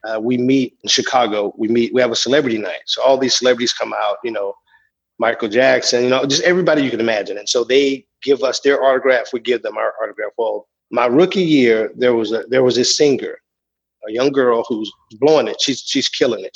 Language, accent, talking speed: English, American, 225 wpm